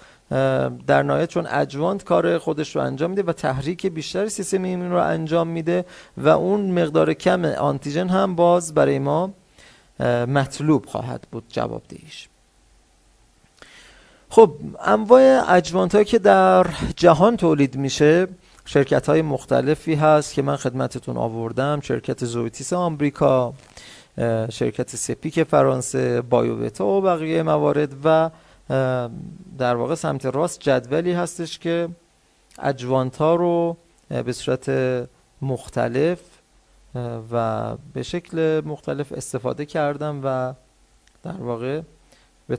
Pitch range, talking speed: 130-175 Hz, 115 wpm